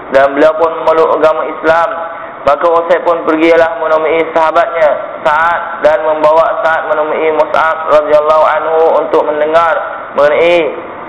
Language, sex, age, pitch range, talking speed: Malay, male, 20-39, 155-175 Hz, 120 wpm